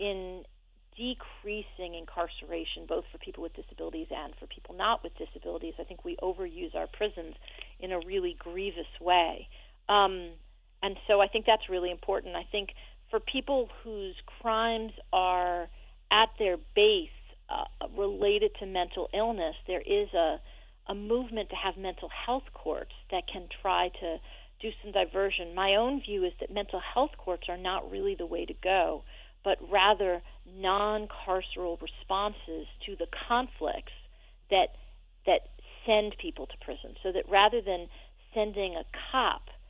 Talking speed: 150 wpm